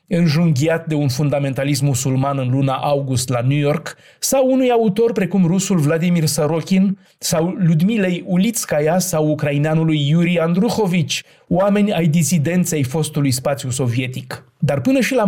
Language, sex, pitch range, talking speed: Romanian, male, 145-185 Hz, 135 wpm